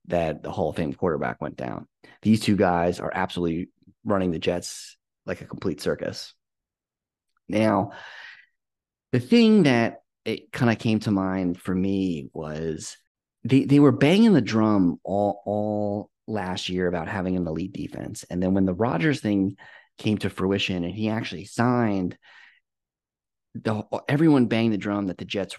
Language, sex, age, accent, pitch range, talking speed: English, male, 30-49, American, 90-110 Hz, 160 wpm